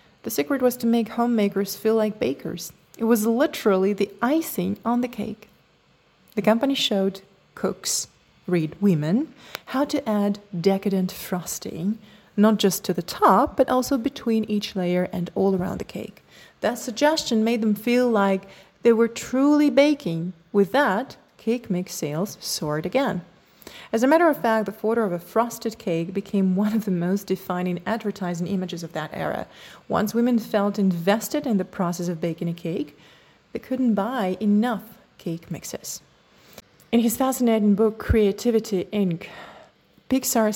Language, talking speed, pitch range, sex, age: English, 155 wpm, 185-230 Hz, female, 30-49